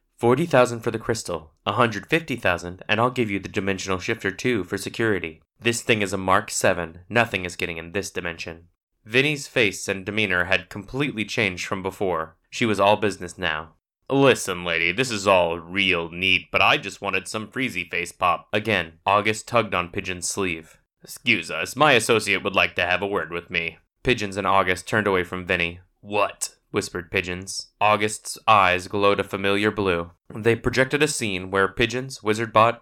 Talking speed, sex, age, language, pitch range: 175 wpm, male, 20-39, English, 90-115 Hz